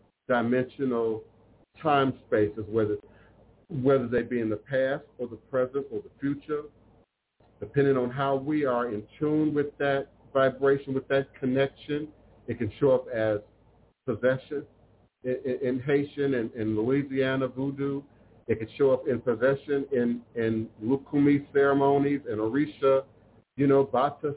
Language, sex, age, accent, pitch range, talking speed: English, male, 50-69, American, 115-140 Hz, 145 wpm